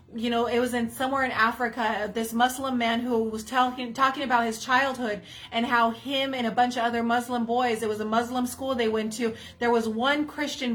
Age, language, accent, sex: 30-49, English, American, female